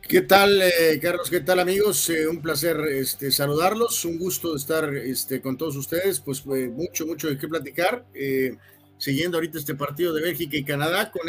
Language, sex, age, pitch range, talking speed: Spanish, male, 40-59, 130-155 Hz, 190 wpm